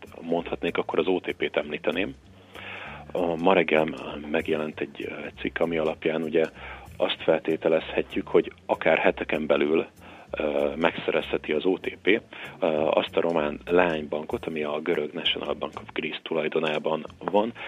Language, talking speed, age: Hungarian, 120 wpm, 40-59